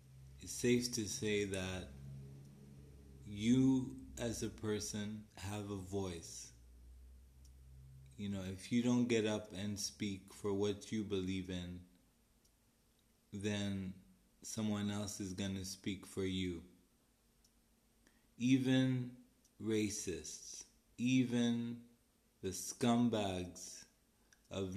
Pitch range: 95-115 Hz